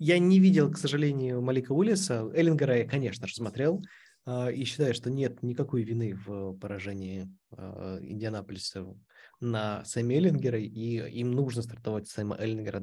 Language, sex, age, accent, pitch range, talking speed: Russian, male, 20-39, native, 110-140 Hz, 140 wpm